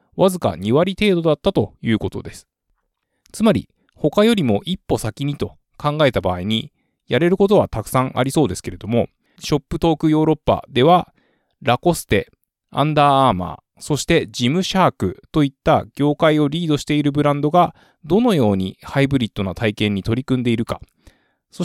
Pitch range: 115-160 Hz